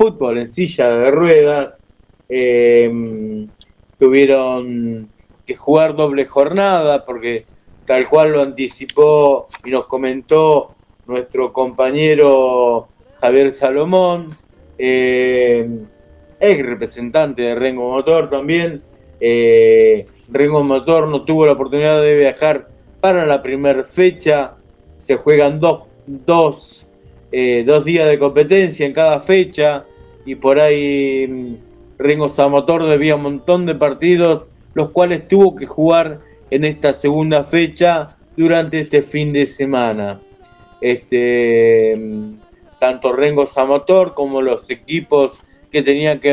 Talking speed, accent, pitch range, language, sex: 115 wpm, Argentinian, 125-155 Hz, Spanish, male